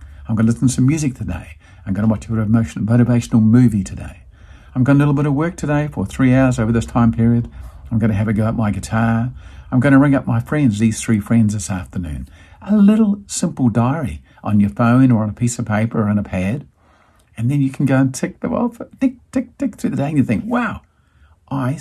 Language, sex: English, male